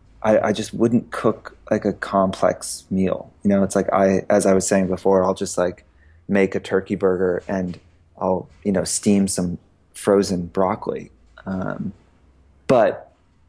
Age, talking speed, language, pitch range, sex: 20-39, 160 wpm, English, 95-105 Hz, male